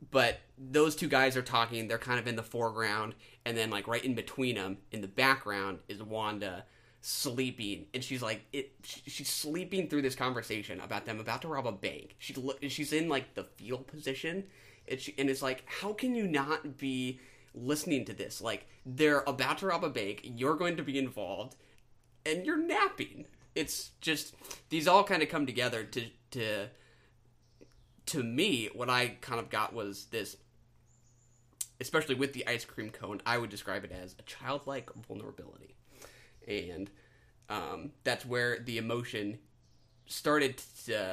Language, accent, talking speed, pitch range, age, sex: English, American, 170 wpm, 115-140 Hz, 20-39, male